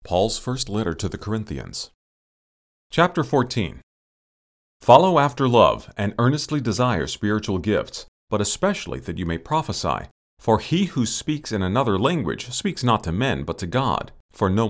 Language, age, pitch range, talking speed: English, 40-59, 90-135 Hz, 155 wpm